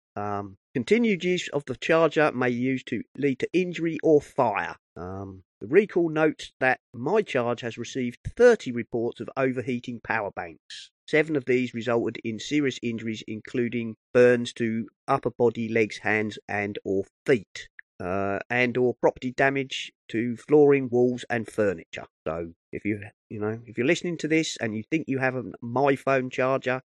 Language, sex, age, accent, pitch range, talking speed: English, male, 40-59, British, 120-160 Hz, 165 wpm